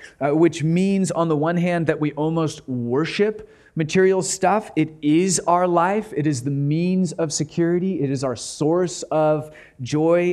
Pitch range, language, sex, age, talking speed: 135-170 Hz, English, male, 30-49, 170 wpm